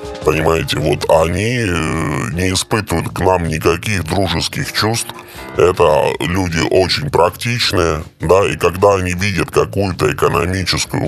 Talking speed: 115 wpm